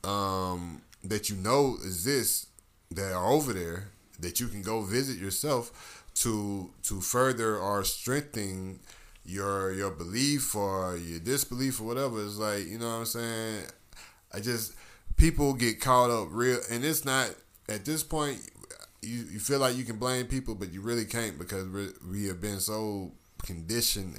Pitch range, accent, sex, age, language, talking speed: 95-115 Hz, American, male, 20-39, English, 165 wpm